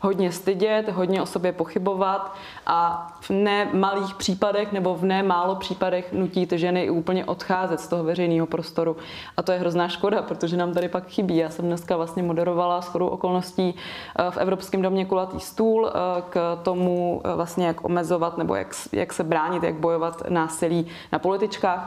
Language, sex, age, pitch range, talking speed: Czech, female, 20-39, 170-190 Hz, 170 wpm